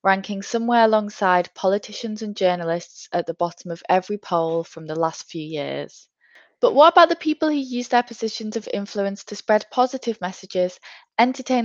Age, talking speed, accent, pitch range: 20-39, 170 wpm, British, 185-230 Hz